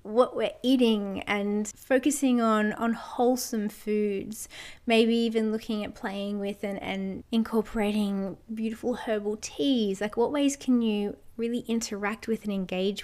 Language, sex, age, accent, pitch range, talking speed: English, female, 20-39, Australian, 200-240 Hz, 145 wpm